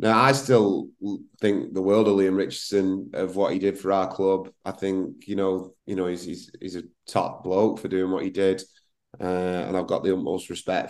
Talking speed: 220 wpm